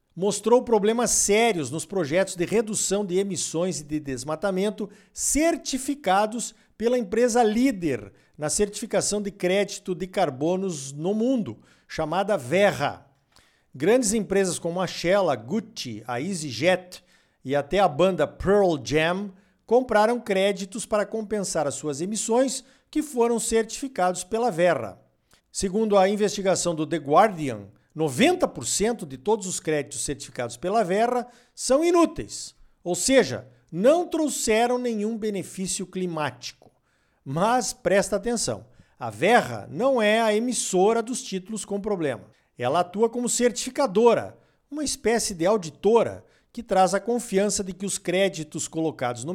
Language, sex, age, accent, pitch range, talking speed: Portuguese, male, 50-69, Brazilian, 175-230 Hz, 130 wpm